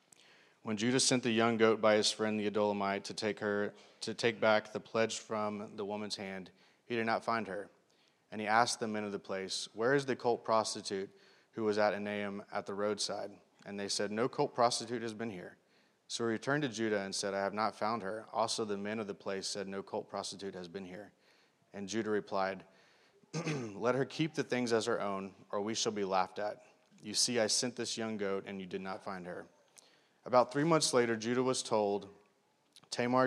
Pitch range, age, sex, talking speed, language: 100-115 Hz, 30-49, male, 215 wpm, English